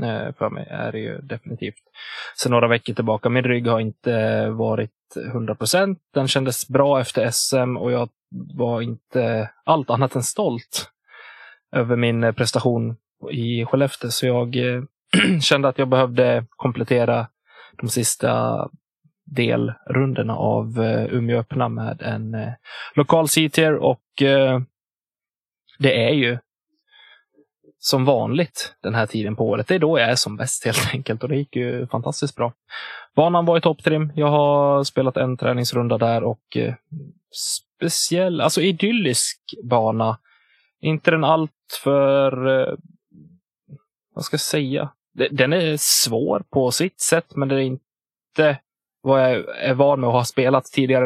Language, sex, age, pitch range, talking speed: Swedish, male, 20-39, 120-145 Hz, 140 wpm